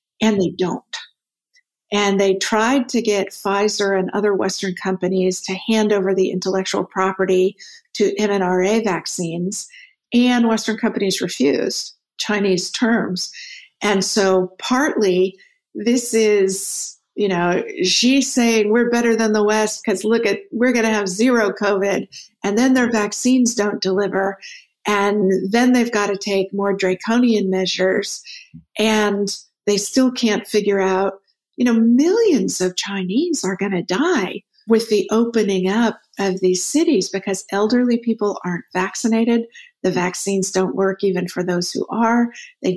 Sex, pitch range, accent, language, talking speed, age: female, 190-235 Hz, American, English, 145 wpm, 50-69